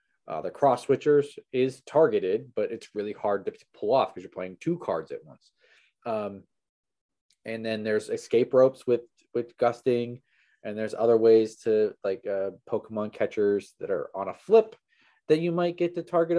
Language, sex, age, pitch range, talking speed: English, male, 20-39, 110-145 Hz, 180 wpm